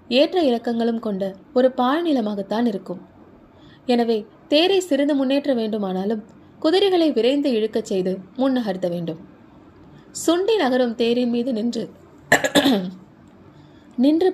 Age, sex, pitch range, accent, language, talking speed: 20-39, female, 215-280 Hz, native, Tamil, 95 wpm